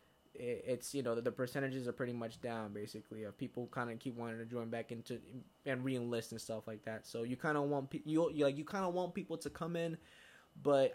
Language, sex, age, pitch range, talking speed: English, male, 20-39, 115-130 Hz, 230 wpm